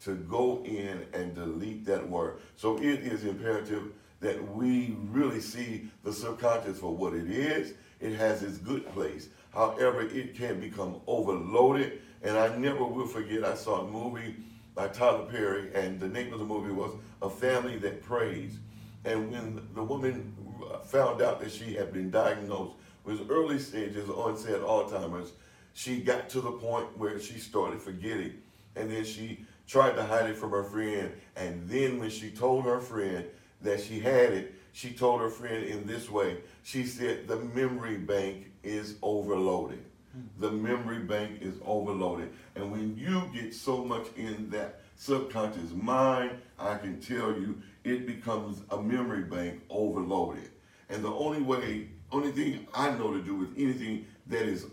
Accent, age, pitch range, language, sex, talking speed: American, 50-69, 100-120 Hz, English, male, 170 wpm